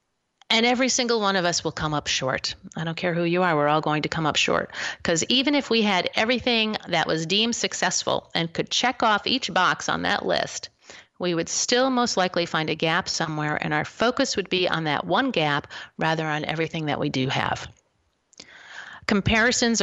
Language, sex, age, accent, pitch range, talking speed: English, female, 40-59, American, 155-200 Hz, 205 wpm